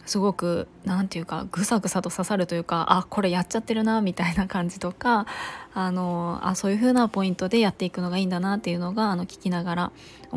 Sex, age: female, 20-39